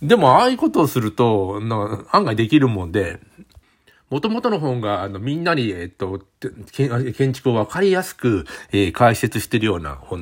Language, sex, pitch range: Japanese, male, 95-140 Hz